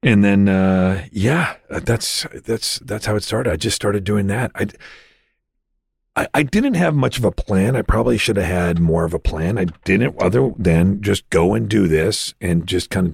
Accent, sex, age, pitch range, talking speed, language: American, male, 40-59, 80-125 Hz, 210 wpm, English